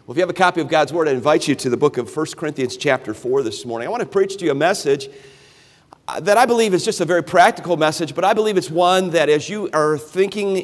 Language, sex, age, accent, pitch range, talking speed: English, male, 50-69, American, 130-170 Hz, 275 wpm